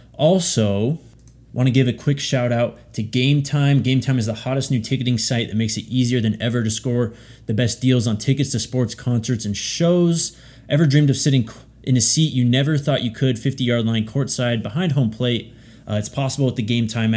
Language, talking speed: English, 220 wpm